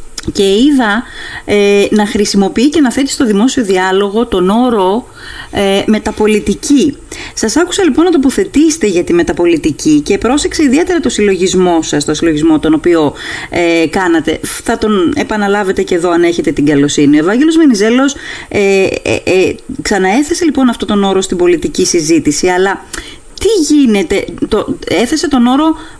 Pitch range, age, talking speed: 200-315 Hz, 30-49, 150 wpm